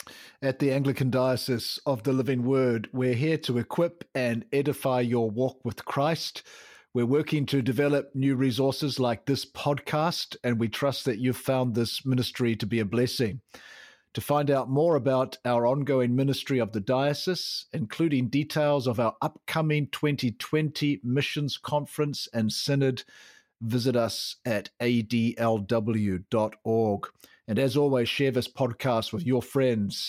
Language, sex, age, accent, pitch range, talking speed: English, male, 50-69, Australian, 115-140 Hz, 145 wpm